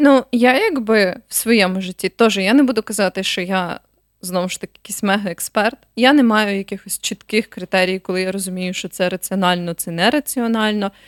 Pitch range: 190-230 Hz